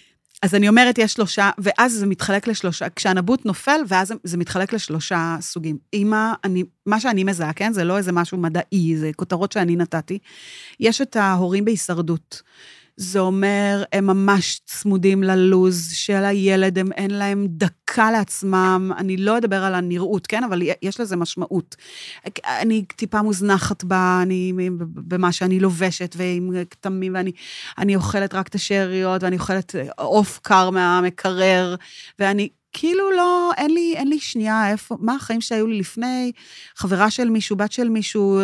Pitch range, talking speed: 180-220 Hz, 150 wpm